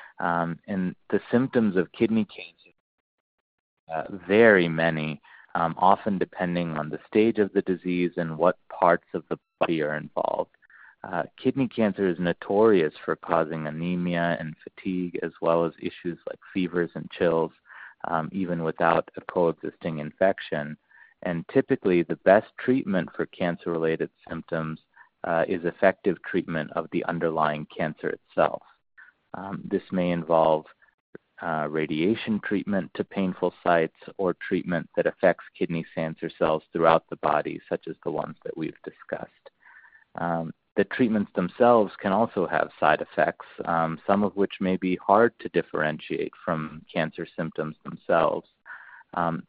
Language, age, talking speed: English, 30-49, 145 wpm